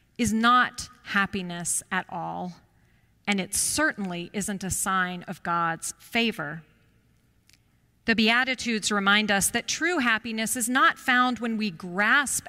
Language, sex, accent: English, female, American